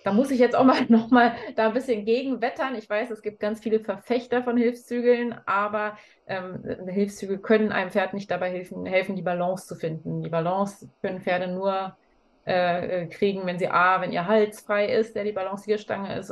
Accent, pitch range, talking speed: German, 175-230 Hz, 200 wpm